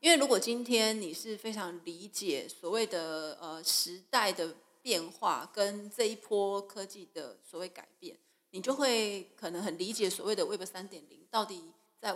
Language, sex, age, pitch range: Chinese, female, 20-39, 180-240 Hz